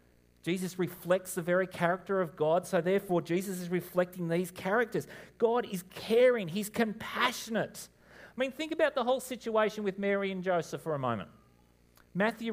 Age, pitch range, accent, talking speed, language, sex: 40-59, 135-185 Hz, Australian, 165 wpm, English, male